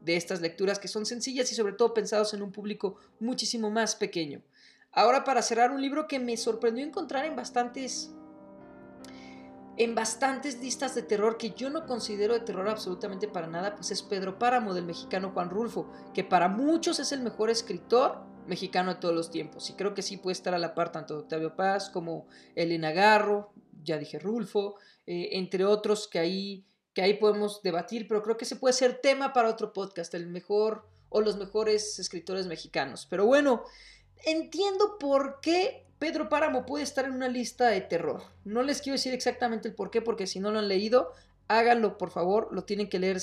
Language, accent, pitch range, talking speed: Spanish, Mexican, 180-235 Hz, 195 wpm